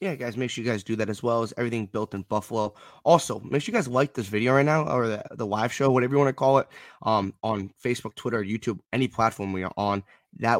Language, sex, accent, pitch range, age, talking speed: English, male, American, 105-135 Hz, 20-39, 265 wpm